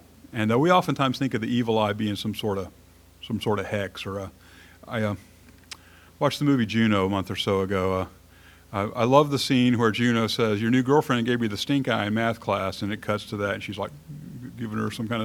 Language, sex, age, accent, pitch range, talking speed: English, male, 50-69, American, 90-120 Hz, 245 wpm